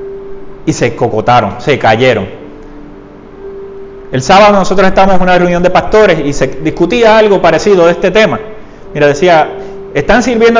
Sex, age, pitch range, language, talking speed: male, 30-49, 155-220 Hz, Spanish, 145 wpm